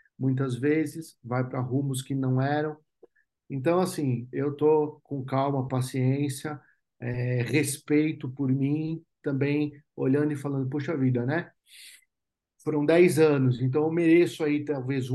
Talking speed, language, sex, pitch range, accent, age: 130 wpm, Portuguese, male, 130-155 Hz, Brazilian, 50-69